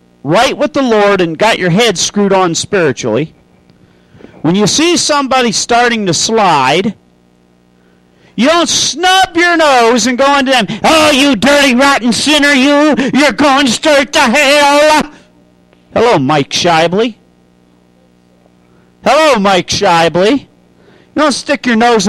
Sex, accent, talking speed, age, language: male, American, 135 wpm, 40-59, English